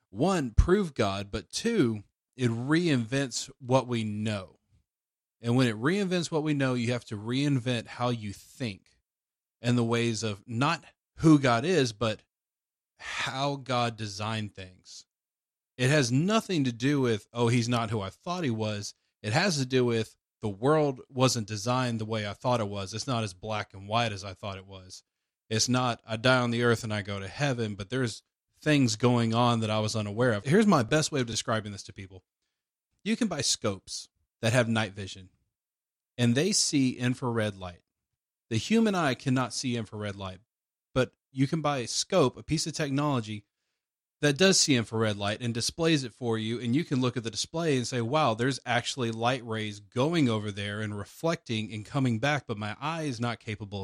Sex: male